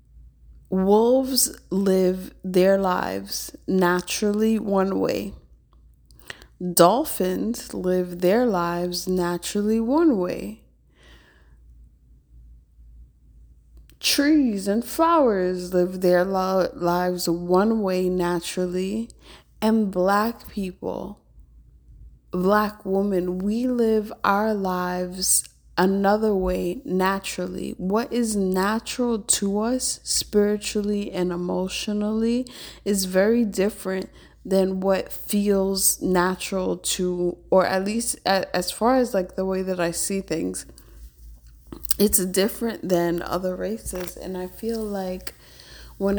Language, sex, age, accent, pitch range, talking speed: English, female, 20-39, American, 175-205 Hz, 95 wpm